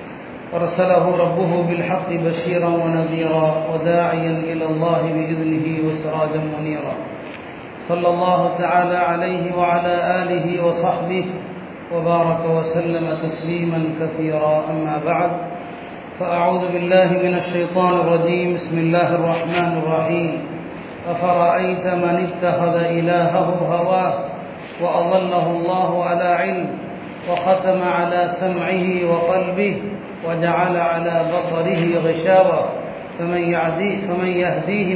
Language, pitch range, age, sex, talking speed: Tamil, 165-180 Hz, 40-59, male, 95 wpm